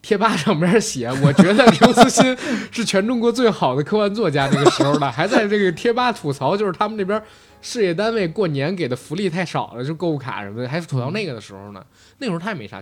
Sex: male